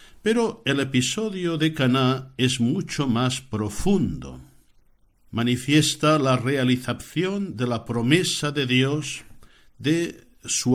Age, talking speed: 60-79, 105 wpm